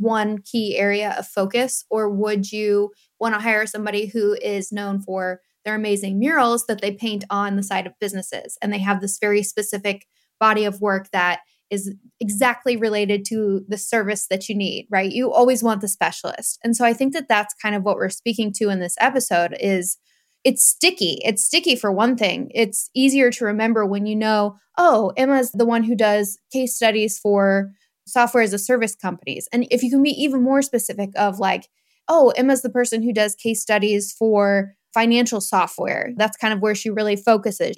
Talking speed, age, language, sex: 195 wpm, 10-29, English, female